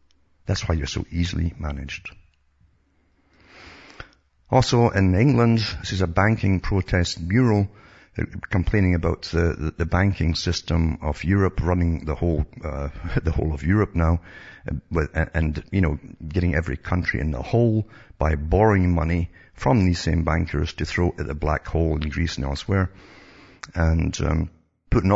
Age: 50-69